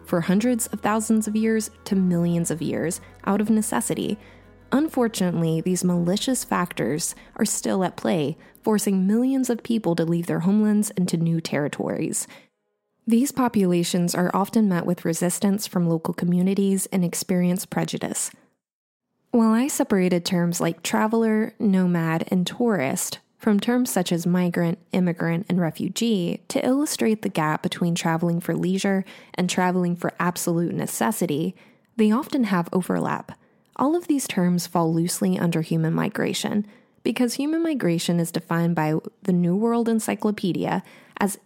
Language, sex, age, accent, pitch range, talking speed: English, female, 20-39, American, 170-225 Hz, 145 wpm